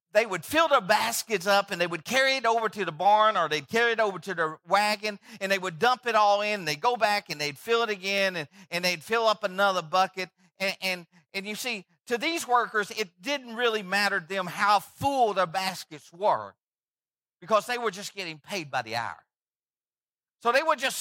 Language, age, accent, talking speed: English, 50-69, American, 225 wpm